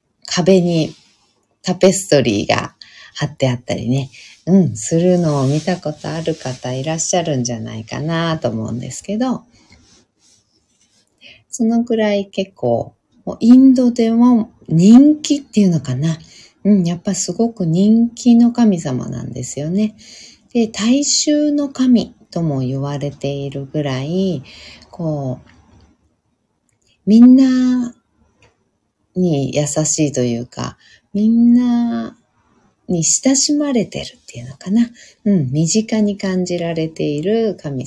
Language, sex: Japanese, female